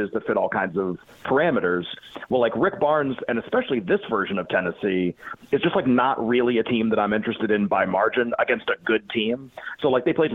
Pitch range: 105-125 Hz